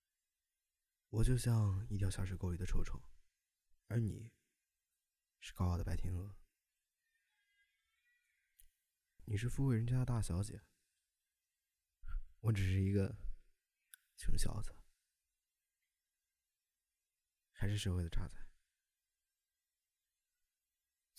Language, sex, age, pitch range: Chinese, male, 20-39, 85-110 Hz